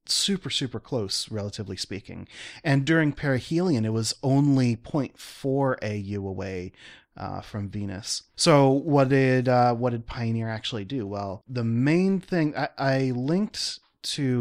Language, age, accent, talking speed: English, 30-49, American, 145 wpm